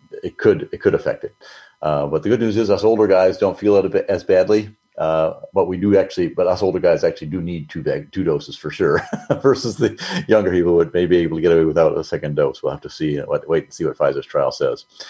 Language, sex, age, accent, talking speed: English, male, 50-69, American, 270 wpm